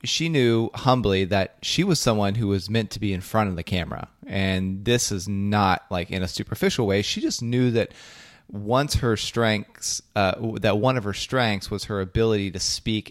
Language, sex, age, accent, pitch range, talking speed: English, male, 30-49, American, 95-115 Hz, 200 wpm